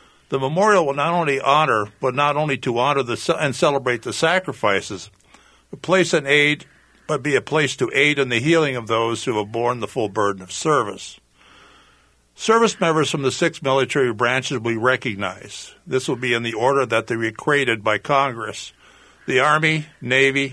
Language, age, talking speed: English, 60-79, 185 wpm